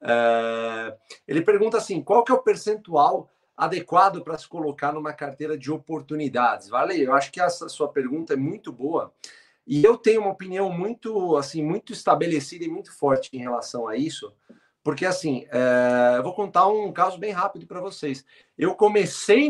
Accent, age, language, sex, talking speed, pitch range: Brazilian, 40-59, Portuguese, male, 165 wpm, 140-230 Hz